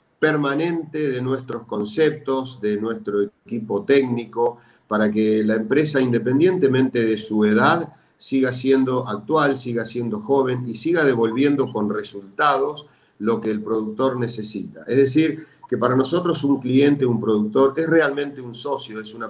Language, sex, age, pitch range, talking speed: Spanish, male, 40-59, 110-140 Hz, 145 wpm